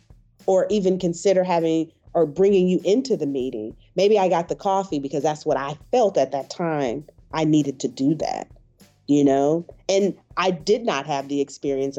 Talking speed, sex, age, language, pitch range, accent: 185 wpm, female, 30-49, English, 135-170 Hz, American